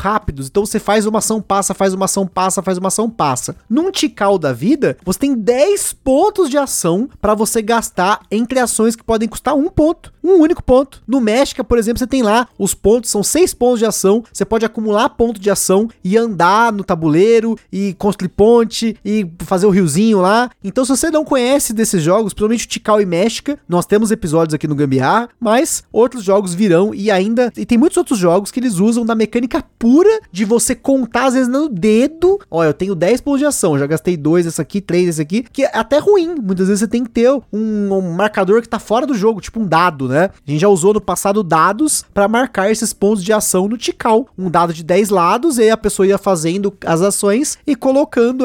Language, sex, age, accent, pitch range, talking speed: Portuguese, male, 20-39, Brazilian, 190-245 Hz, 225 wpm